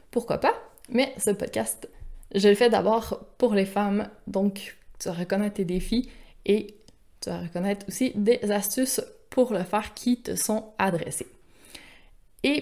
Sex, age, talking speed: female, 20-39, 155 wpm